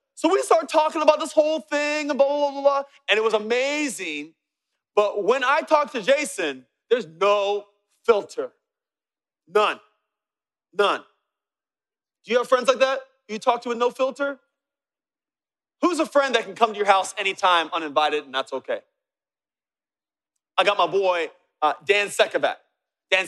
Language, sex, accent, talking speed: English, male, American, 160 wpm